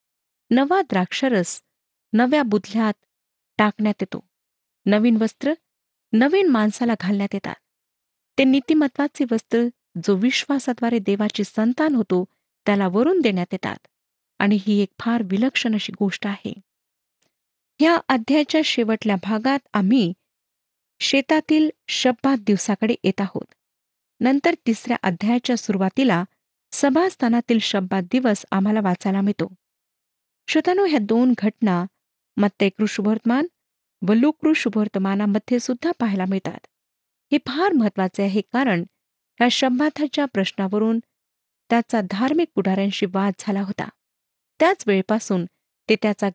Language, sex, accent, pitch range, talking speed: Marathi, female, native, 200-265 Hz, 105 wpm